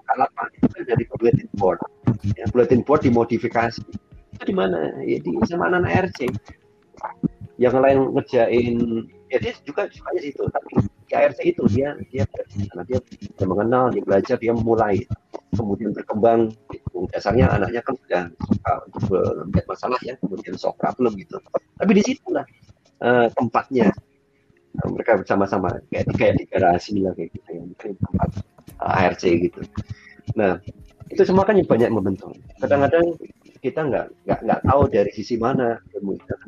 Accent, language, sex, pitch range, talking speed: native, Indonesian, male, 105-130 Hz, 120 wpm